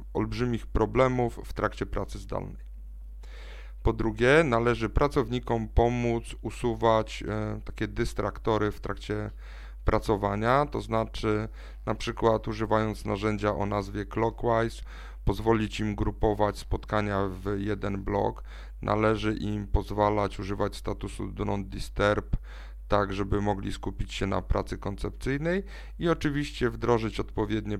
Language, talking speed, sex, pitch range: Polish, 110 wpm, male, 100-115 Hz